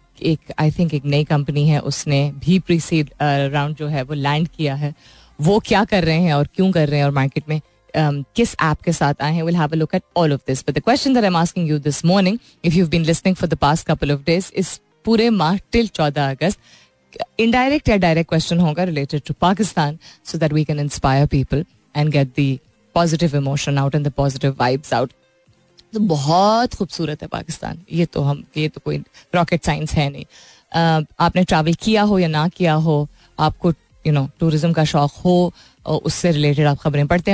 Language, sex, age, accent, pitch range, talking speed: Hindi, female, 20-39, native, 145-185 Hz, 170 wpm